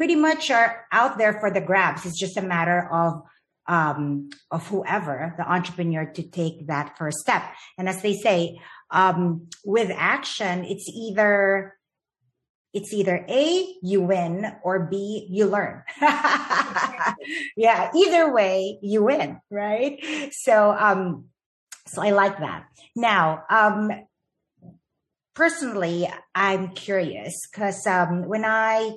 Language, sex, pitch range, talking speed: English, female, 175-225 Hz, 125 wpm